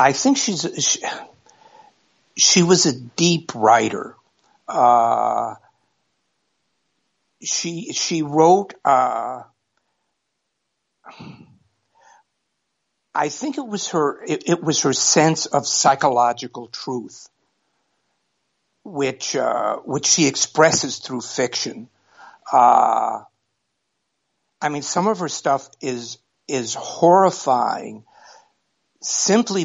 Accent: American